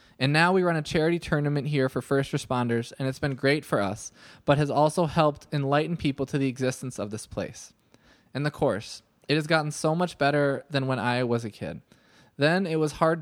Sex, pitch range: male, 130-160 Hz